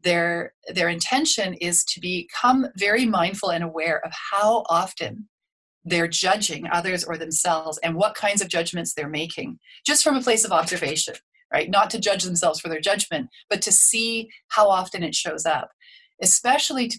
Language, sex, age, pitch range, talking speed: English, female, 30-49, 170-220 Hz, 175 wpm